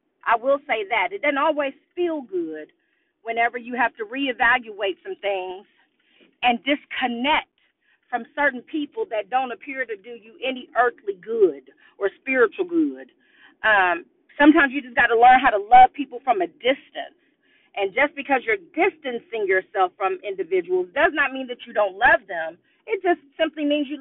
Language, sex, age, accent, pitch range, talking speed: English, female, 40-59, American, 235-330 Hz, 170 wpm